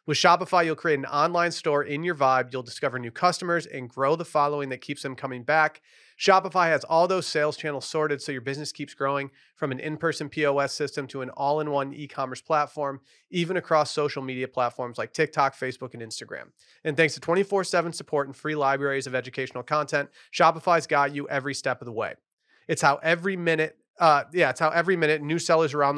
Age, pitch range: 30-49, 130-160 Hz